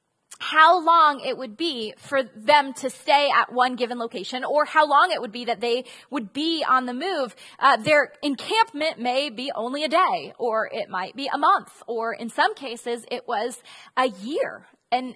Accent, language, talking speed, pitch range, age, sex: American, English, 195 wpm, 235-305 Hz, 20-39, female